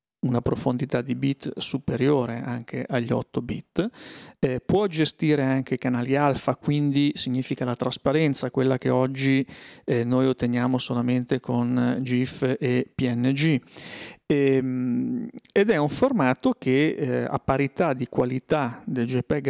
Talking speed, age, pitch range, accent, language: 130 wpm, 40-59, 125-135 Hz, native, Italian